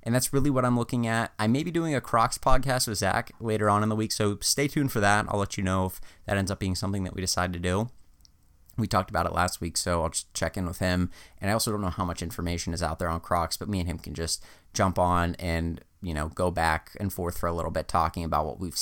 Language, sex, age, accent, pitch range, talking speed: English, male, 30-49, American, 85-100 Hz, 285 wpm